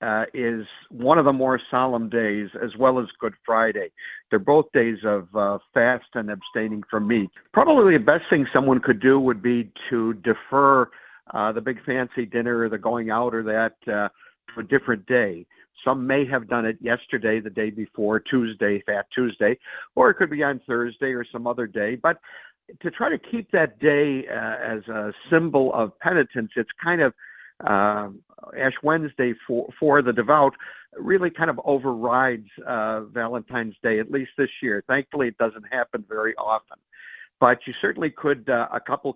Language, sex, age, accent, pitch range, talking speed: English, male, 50-69, American, 110-130 Hz, 180 wpm